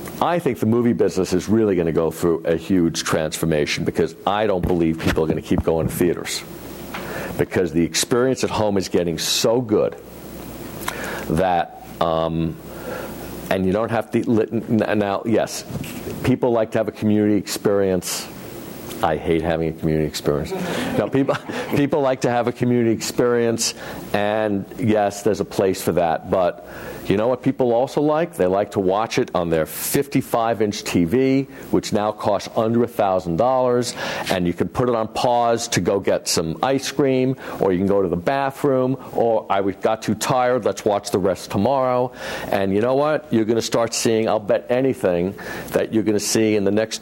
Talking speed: 185 wpm